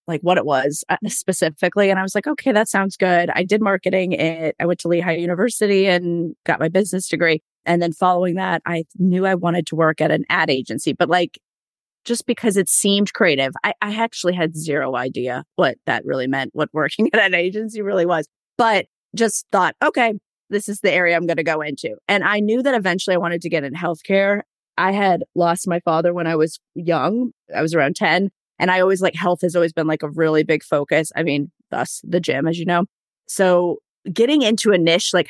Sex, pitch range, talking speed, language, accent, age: female, 165-190 Hz, 220 wpm, English, American, 30-49